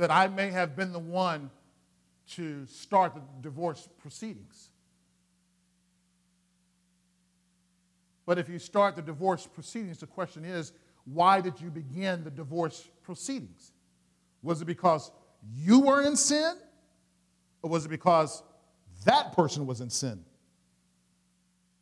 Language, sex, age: English, male, 50-69